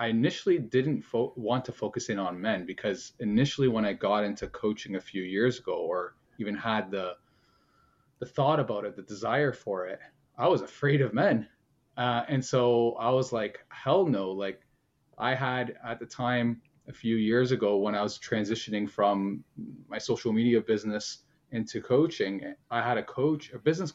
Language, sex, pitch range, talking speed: English, male, 105-135 Hz, 185 wpm